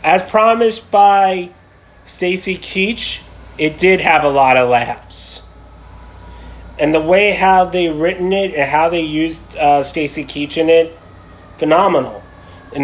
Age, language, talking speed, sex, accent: 30-49, English, 140 wpm, male, American